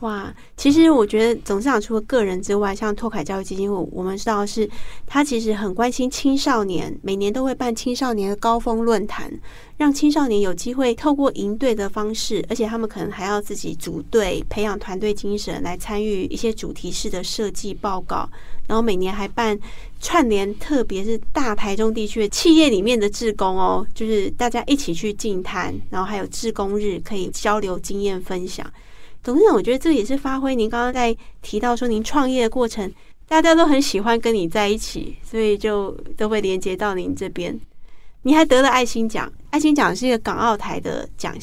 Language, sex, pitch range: Chinese, female, 200-245 Hz